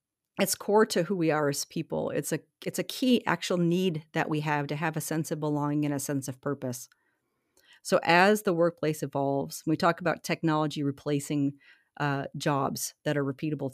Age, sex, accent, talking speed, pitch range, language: 40-59, female, American, 195 wpm, 145-175 Hz, English